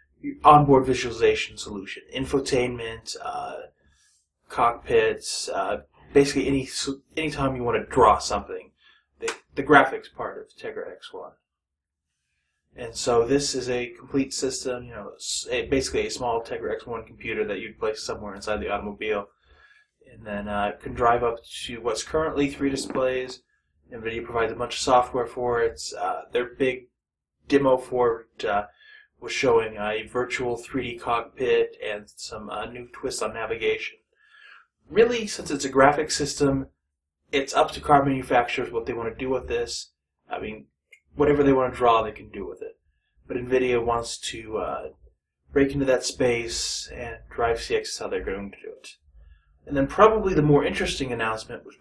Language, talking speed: English, 165 wpm